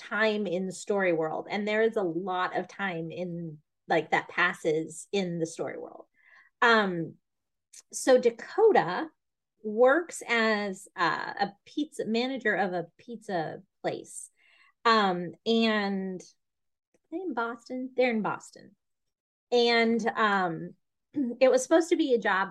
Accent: American